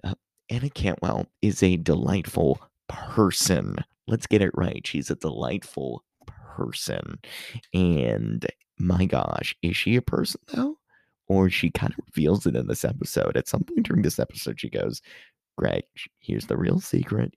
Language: English